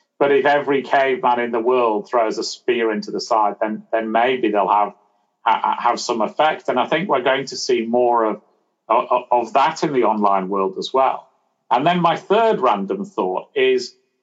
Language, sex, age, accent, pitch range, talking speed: English, male, 40-59, British, 115-170 Hz, 195 wpm